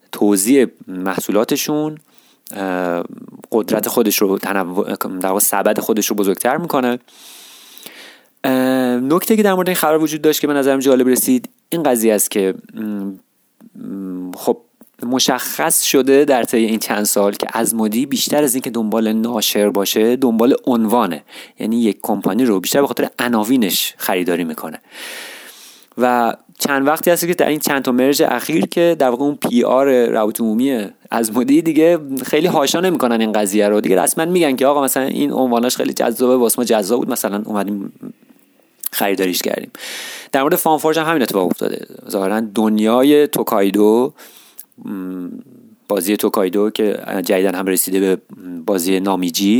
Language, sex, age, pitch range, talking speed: Persian, male, 30-49, 105-145 Hz, 145 wpm